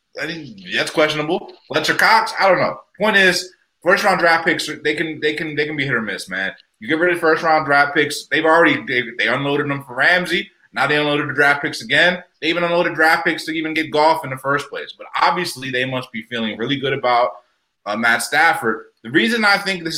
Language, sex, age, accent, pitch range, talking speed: English, male, 30-49, American, 115-160 Hz, 220 wpm